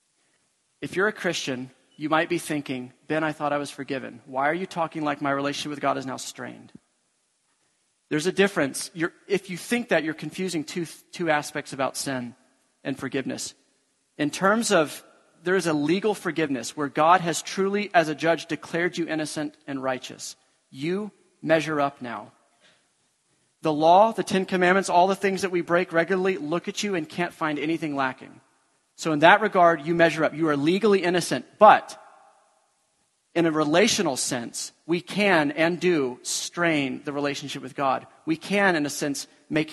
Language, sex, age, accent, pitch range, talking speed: English, male, 40-59, American, 145-180 Hz, 175 wpm